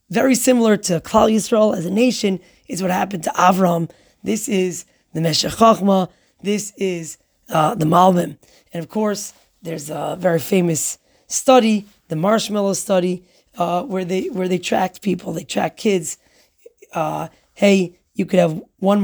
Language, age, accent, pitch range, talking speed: English, 20-39, American, 170-205 Hz, 150 wpm